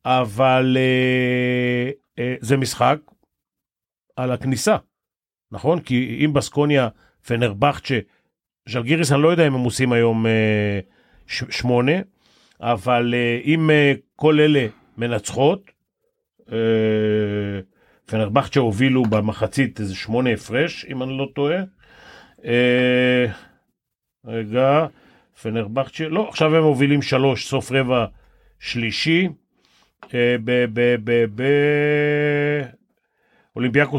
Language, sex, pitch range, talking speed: Hebrew, male, 115-145 Hz, 95 wpm